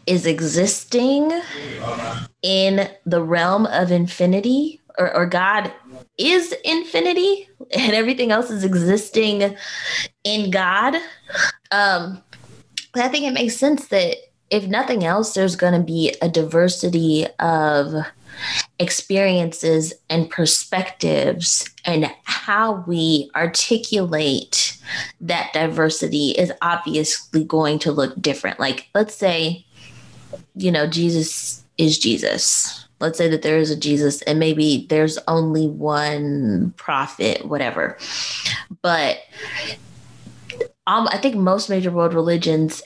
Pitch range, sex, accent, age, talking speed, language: 160-210 Hz, female, American, 20-39, 110 wpm, English